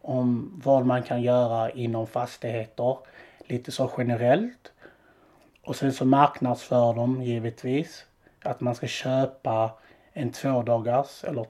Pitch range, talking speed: 115-135 Hz, 120 wpm